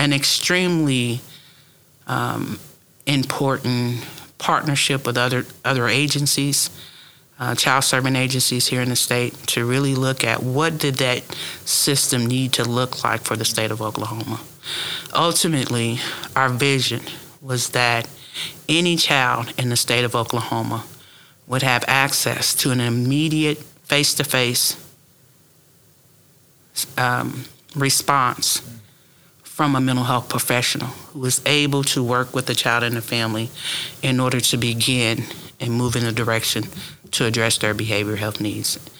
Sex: male